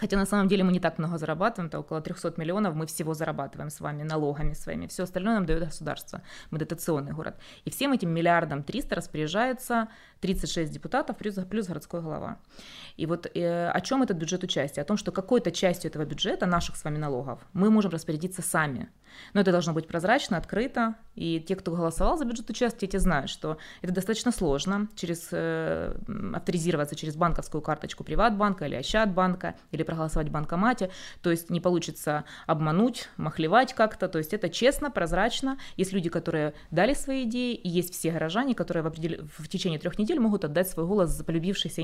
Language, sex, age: Ukrainian, female, 20-39